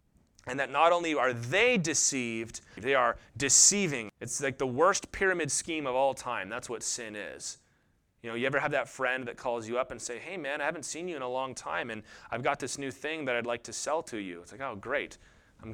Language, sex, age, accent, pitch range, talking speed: English, male, 30-49, American, 130-190 Hz, 245 wpm